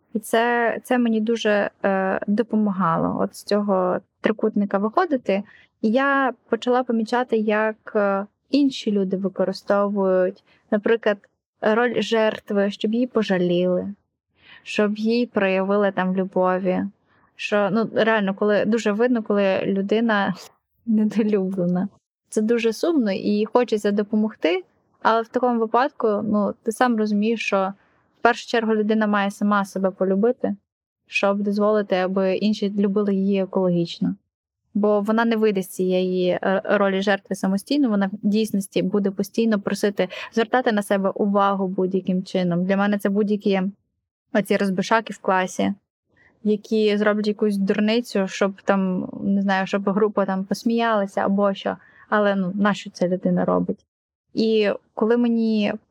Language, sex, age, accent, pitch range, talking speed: Ukrainian, female, 10-29, native, 195-220 Hz, 135 wpm